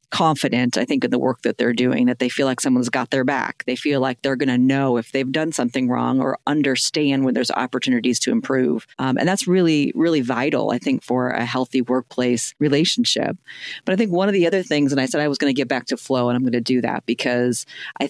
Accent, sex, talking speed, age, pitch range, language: American, female, 250 wpm, 40-59, 130-155 Hz, English